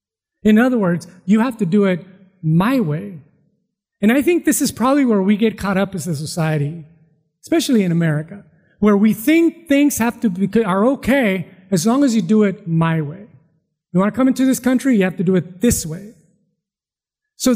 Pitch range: 175-230 Hz